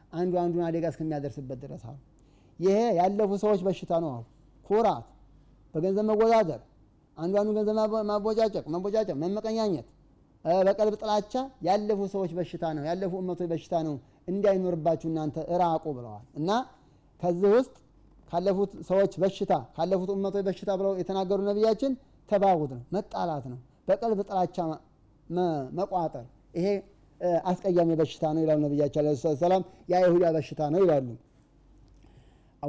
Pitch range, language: 155-200 Hz, Amharic